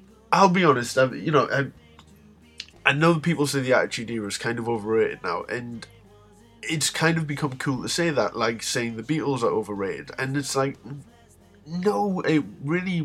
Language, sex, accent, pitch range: English, male, British, 115-155 Hz